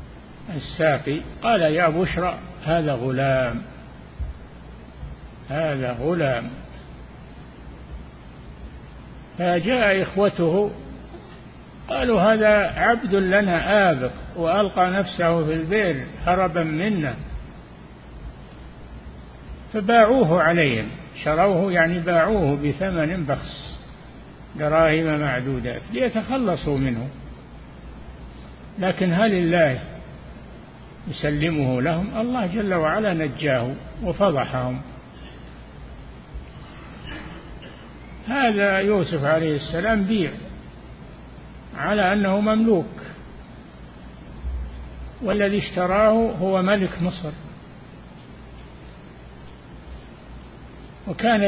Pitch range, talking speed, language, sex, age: 120-185 Hz, 65 wpm, Arabic, male, 50-69